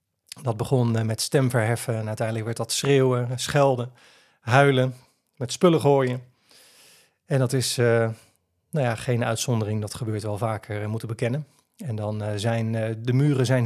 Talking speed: 160 wpm